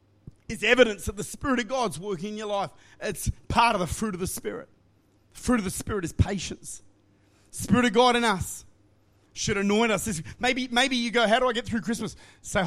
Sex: male